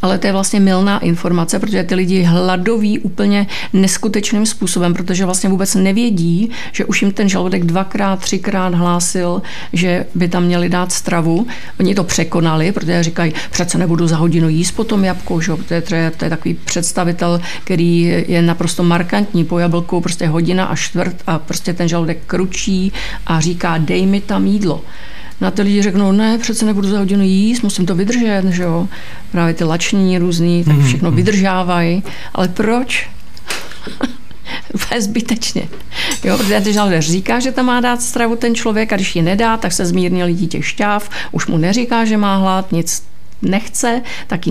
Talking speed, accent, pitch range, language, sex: 170 wpm, native, 170-205 Hz, Czech, female